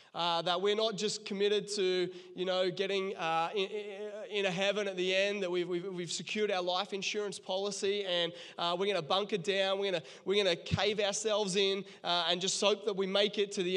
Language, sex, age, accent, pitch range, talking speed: English, male, 20-39, Australian, 185-210 Hz, 220 wpm